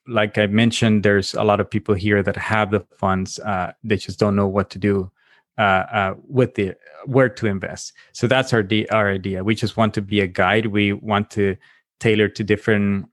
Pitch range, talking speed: 100-110 Hz, 210 wpm